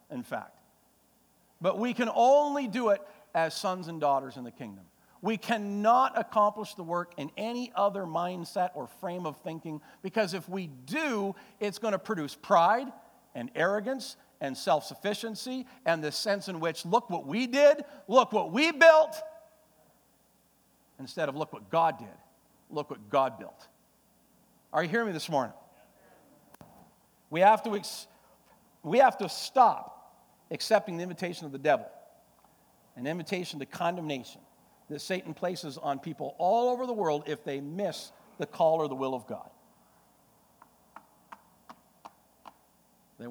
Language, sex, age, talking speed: English, male, 50-69, 150 wpm